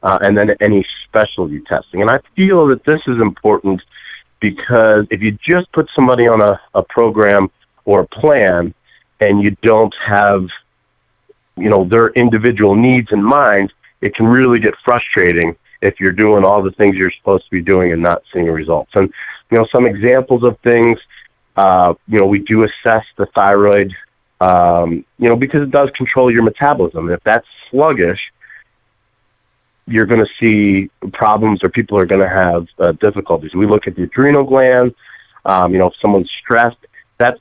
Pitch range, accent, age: 95-120 Hz, American, 30-49